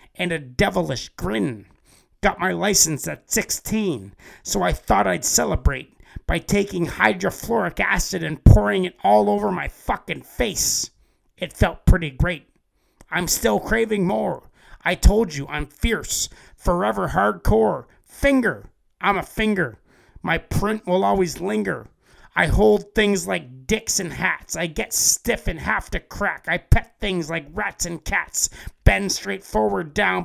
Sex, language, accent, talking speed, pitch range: male, English, American, 150 wpm, 130-210 Hz